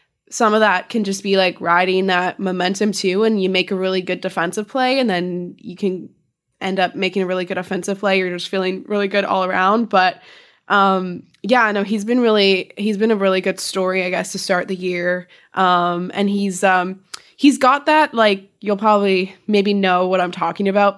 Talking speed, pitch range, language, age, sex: 210 wpm, 185-215 Hz, English, 20-39, female